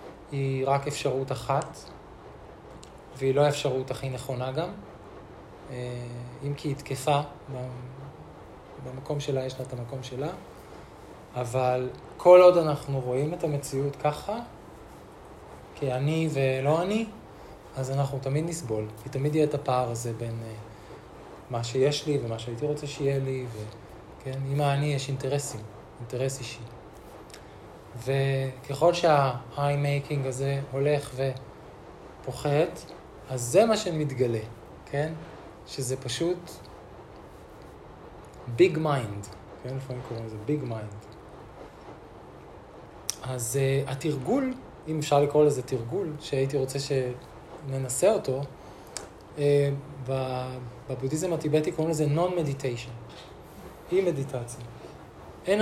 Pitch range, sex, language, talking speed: 125-145 Hz, male, Hebrew, 105 wpm